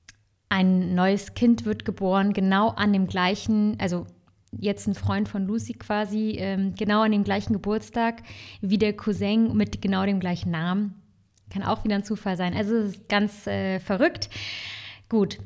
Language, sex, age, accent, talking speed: German, female, 20-39, German, 155 wpm